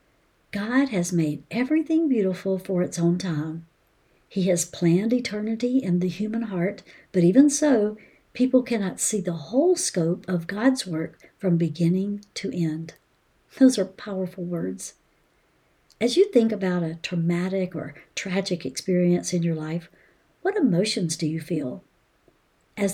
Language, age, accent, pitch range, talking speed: English, 60-79, American, 180-240 Hz, 145 wpm